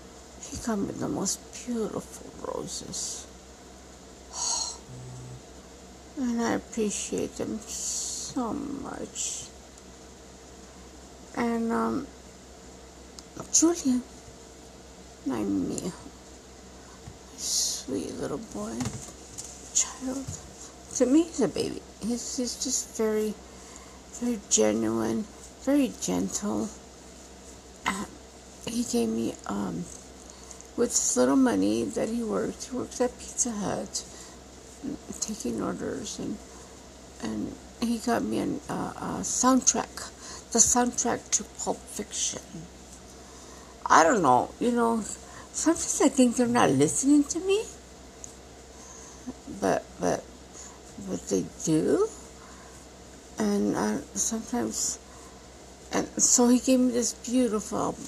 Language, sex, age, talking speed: English, female, 60-79, 100 wpm